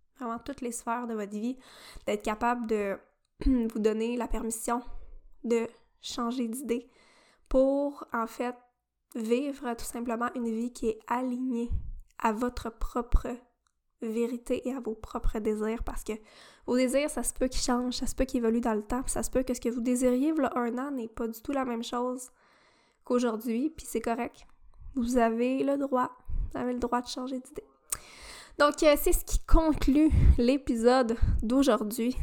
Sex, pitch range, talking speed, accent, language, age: female, 235-265 Hz, 175 wpm, Canadian, French, 10-29